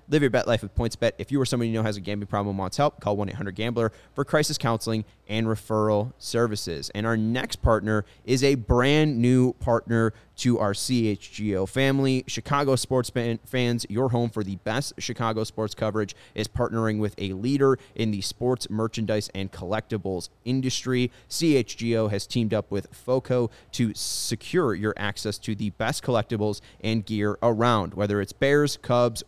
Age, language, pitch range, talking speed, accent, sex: 30-49, English, 105-125 Hz, 170 wpm, American, male